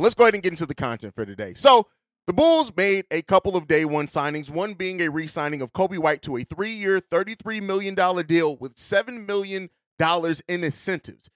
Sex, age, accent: male, 30-49, American